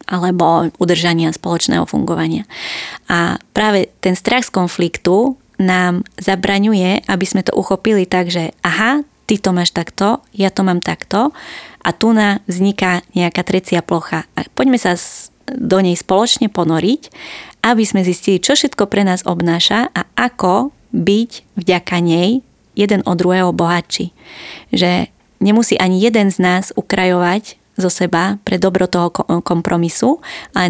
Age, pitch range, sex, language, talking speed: 20-39, 175-205 Hz, female, Slovak, 140 wpm